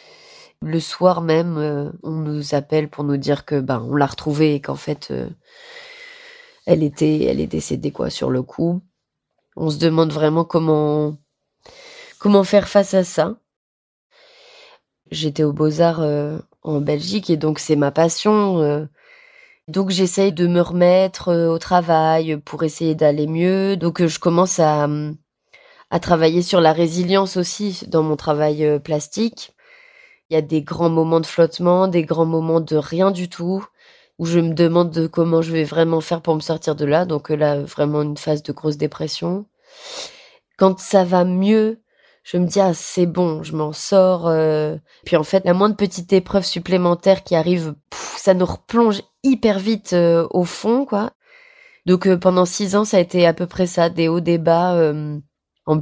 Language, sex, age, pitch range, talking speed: French, female, 20-39, 155-195 Hz, 180 wpm